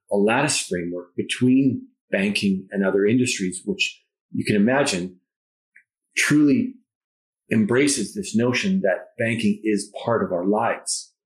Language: English